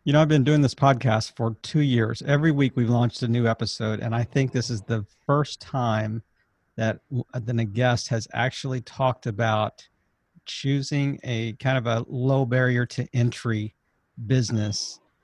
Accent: American